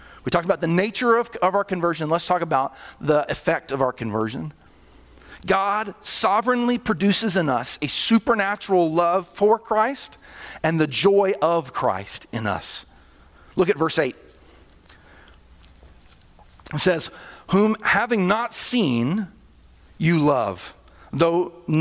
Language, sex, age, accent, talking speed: English, male, 40-59, American, 130 wpm